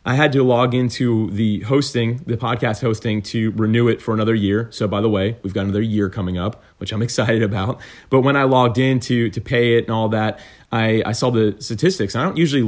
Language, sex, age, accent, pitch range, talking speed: English, male, 30-49, American, 105-125 Hz, 235 wpm